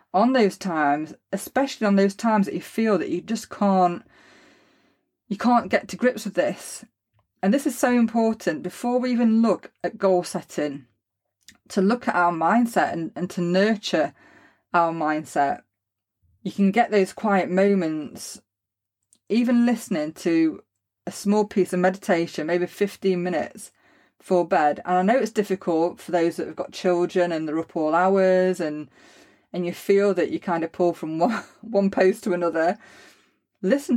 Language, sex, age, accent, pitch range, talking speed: English, female, 30-49, British, 170-225 Hz, 170 wpm